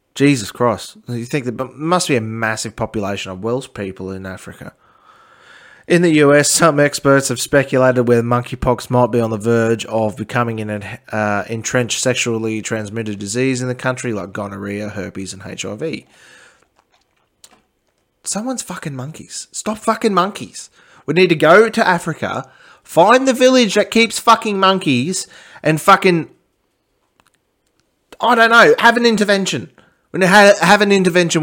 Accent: Australian